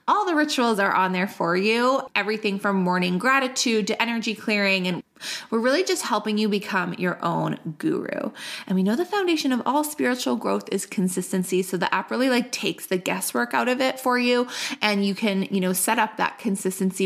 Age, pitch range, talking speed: 20-39, 185-245 Hz, 205 wpm